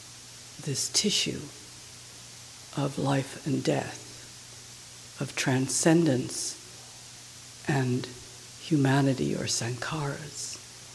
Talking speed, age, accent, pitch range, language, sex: 65 wpm, 60-79, American, 125-160 Hz, English, female